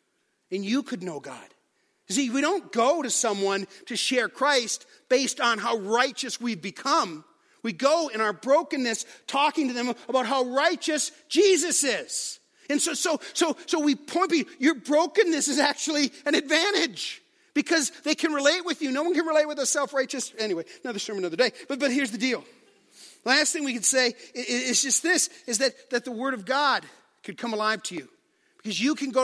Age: 40-59